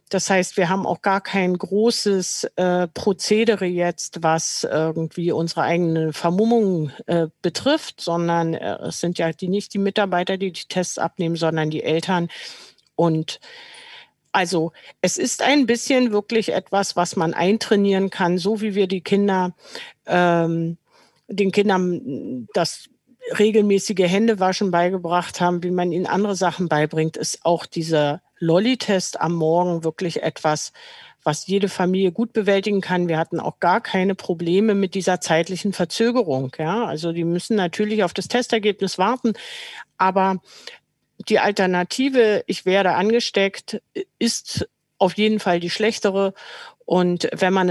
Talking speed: 140 wpm